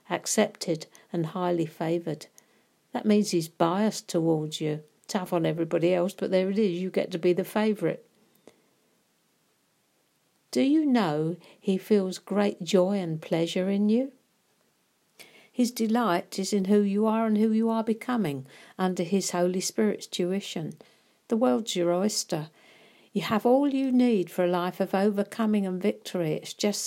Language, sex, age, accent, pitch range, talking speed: English, female, 60-79, British, 175-220 Hz, 155 wpm